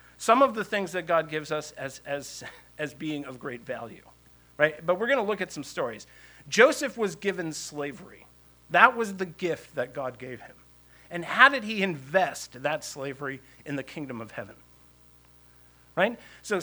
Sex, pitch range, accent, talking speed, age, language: male, 125-180 Hz, American, 180 wpm, 50-69, English